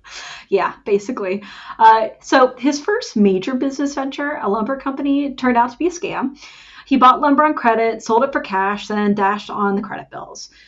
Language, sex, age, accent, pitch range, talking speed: English, female, 30-49, American, 195-260 Hz, 185 wpm